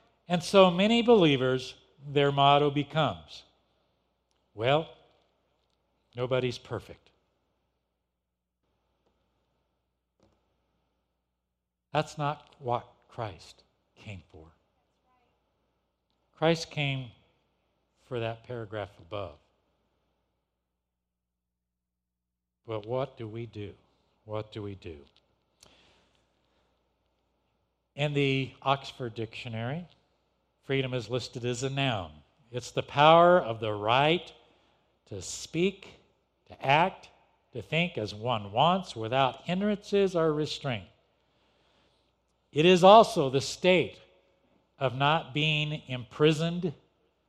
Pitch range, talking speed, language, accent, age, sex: 100-145 Hz, 90 wpm, English, American, 60-79, male